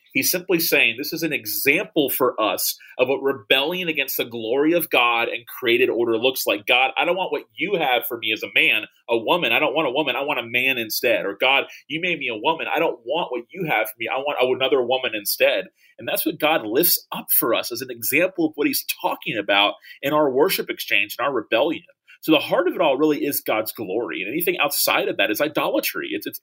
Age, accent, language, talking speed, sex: 30-49, American, English, 245 wpm, male